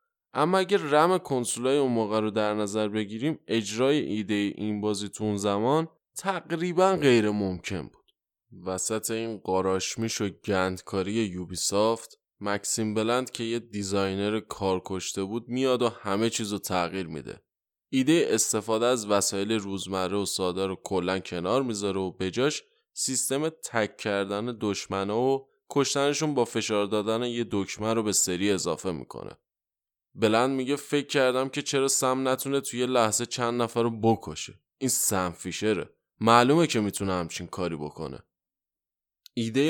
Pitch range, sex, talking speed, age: 100-125 Hz, male, 145 wpm, 20-39